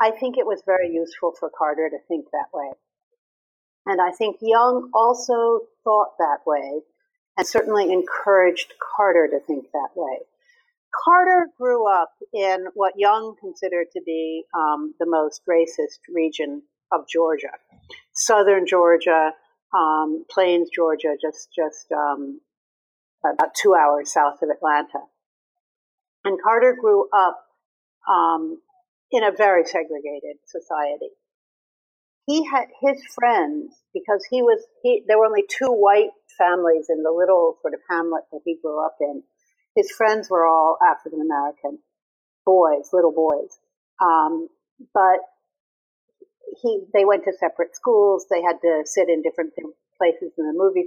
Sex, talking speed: female, 140 wpm